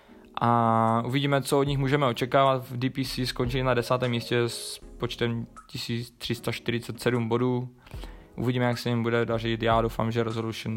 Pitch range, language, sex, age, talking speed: 115-130 Hz, Czech, male, 20-39, 150 wpm